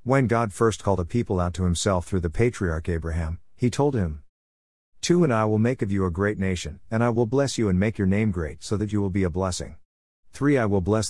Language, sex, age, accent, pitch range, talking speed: English, male, 50-69, American, 85-110 Hz, 255 wpm